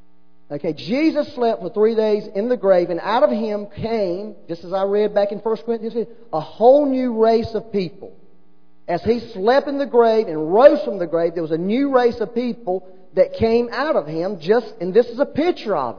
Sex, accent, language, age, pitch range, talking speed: male, American, English, 40-59, 160-230 Hz, 220 wpm